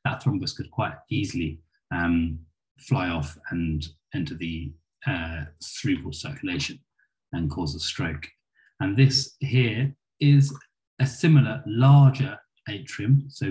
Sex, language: male, English